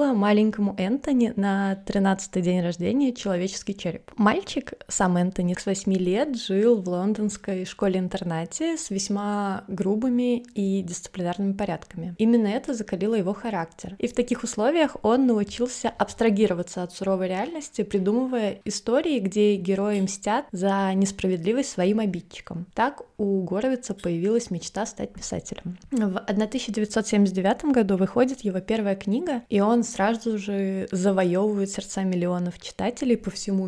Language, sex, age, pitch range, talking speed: Russian, female, 20-39, 185-225 Hz, 130 wpm